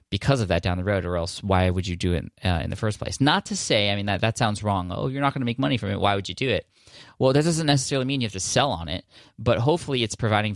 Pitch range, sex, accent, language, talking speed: 95-110 Hz, male, American, English, 320 wpm